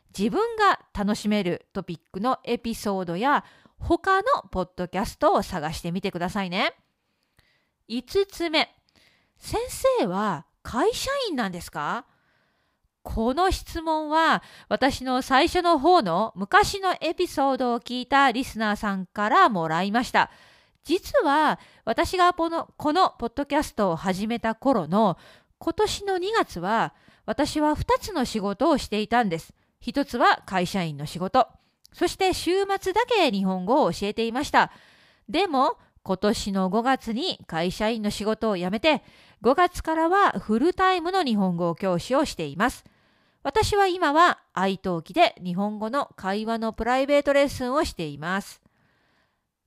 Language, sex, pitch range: Japanese, female, 200-330 Hz